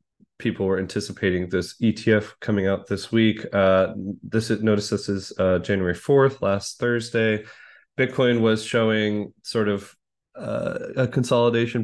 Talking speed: 140 wpm